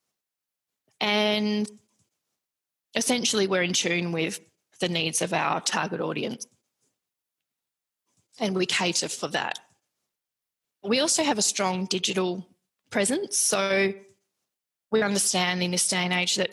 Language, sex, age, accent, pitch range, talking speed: English, female, 20-39, Australian, 180-195 Hz, 120 wpm